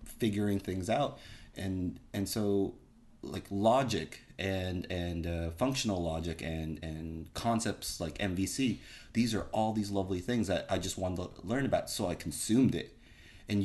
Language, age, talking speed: English, 30-49, 160 wpm